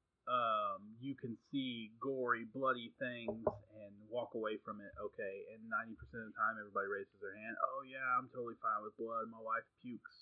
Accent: American